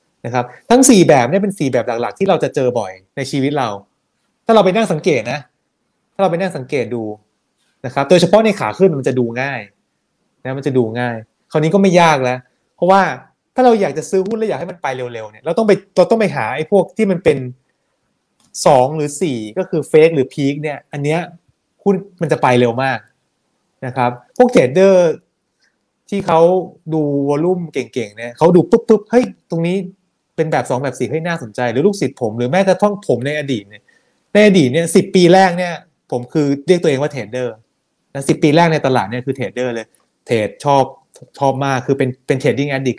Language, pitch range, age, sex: Thai, 130-185 Hz, 20-39, male